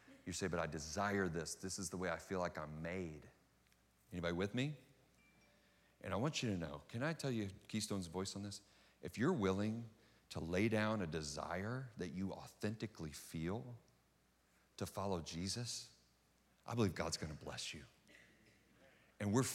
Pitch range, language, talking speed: 85-110 Hz, English, 170 wpm